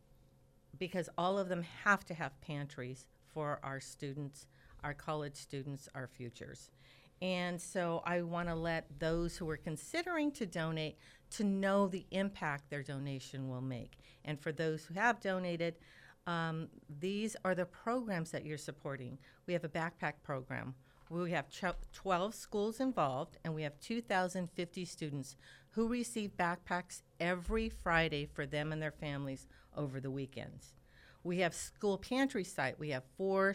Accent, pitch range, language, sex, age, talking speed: American, 145-185 Hz, English, female, 50-69, 150 wpm